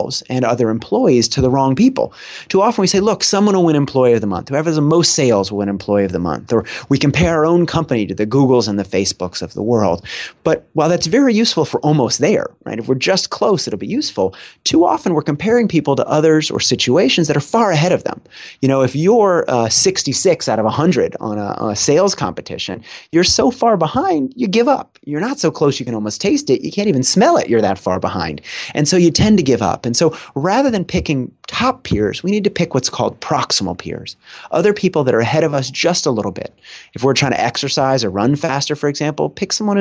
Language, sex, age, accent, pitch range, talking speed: English, male, 30-49, American, 115-170 Hz, 240 wpm